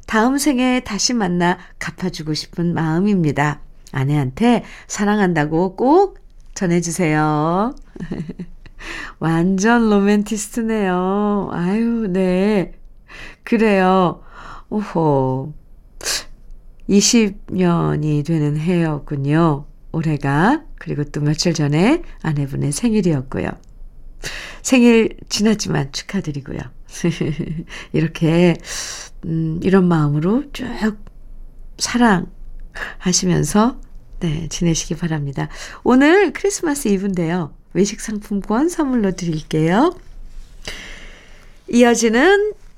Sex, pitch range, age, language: female, 155-225 Hz, 50-69, Korean